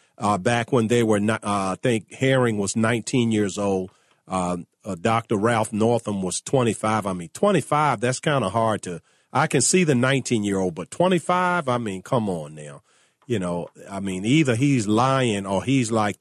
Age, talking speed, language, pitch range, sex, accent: 40-59, 195 wpm, English, 100-130 Hz, male, American